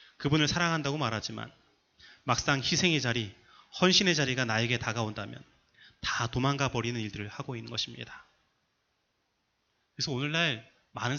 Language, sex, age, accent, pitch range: Korean, male, 30-49, native, 125-160 Hz